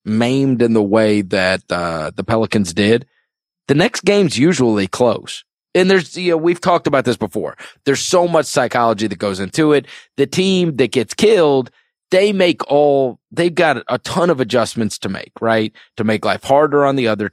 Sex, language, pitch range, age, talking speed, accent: male, English, 110-145 Hz, 30-49, 190 wpm, American